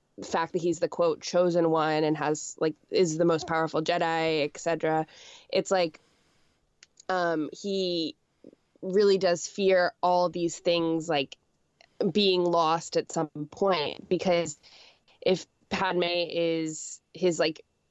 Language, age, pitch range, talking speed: English, 20-39, 160-180 Hz, 125 wpm